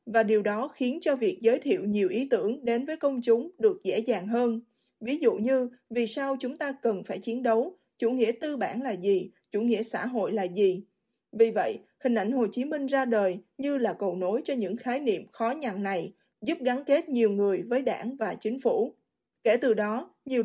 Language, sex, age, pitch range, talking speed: Vietnamese, female, 20-39, 215-265 Hz, 225 wpm